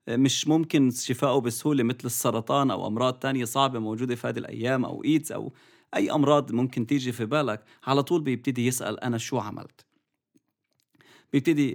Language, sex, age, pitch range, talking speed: English, male, 30-49, 125-170 Hz, 160 wpm